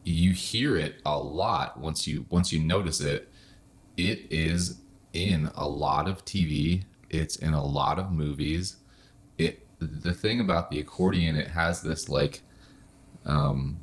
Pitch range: 75-90 Hz